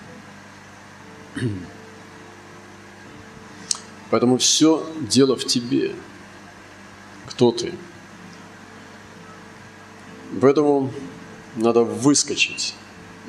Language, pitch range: Russian, 100-115 Hz